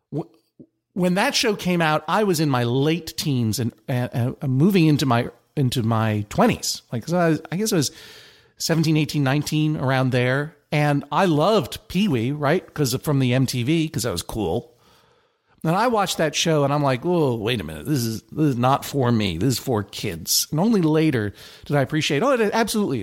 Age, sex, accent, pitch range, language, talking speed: 50-69, male, American, 120-155 Hz, English, 200 wpm